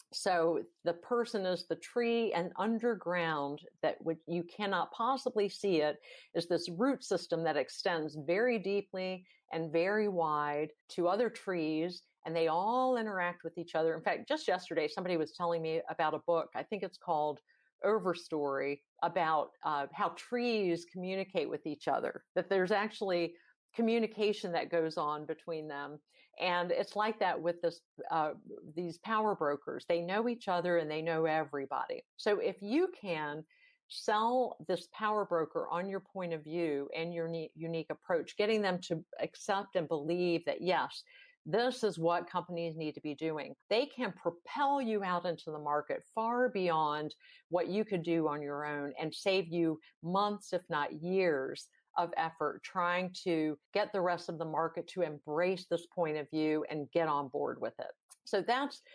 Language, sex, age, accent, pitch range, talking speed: English, female, 50-69, American, 160-205 Hz, 170 wpm